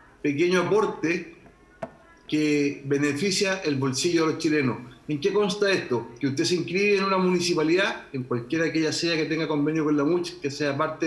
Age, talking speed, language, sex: 40-59, 185 wpm, Spanish, male